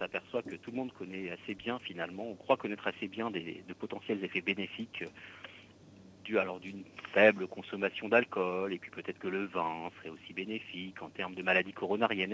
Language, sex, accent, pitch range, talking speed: French, male, French, 95-110 Hz, 195 wpm